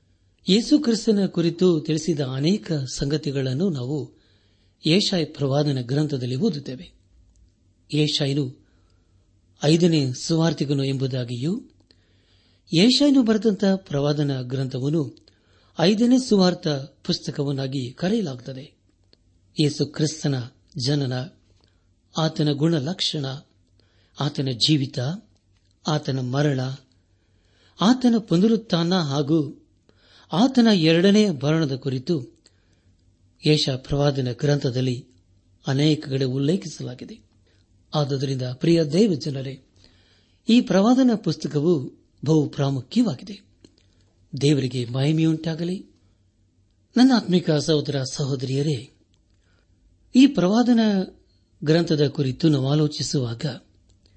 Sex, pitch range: male, 100-160 Hz